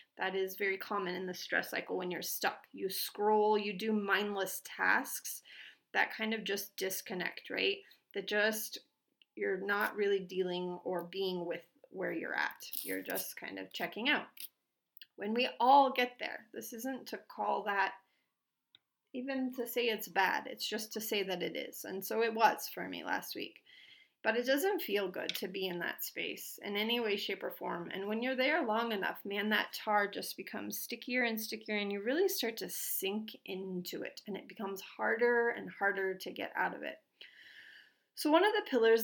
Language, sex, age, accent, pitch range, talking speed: English, female, 30-49, American, 195-240 Hz, 190 wpm